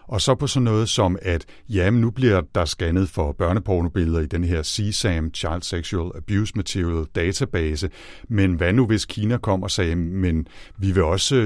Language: Danish